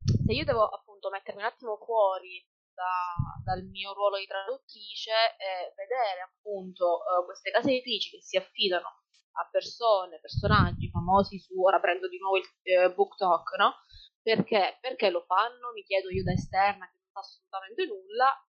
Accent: native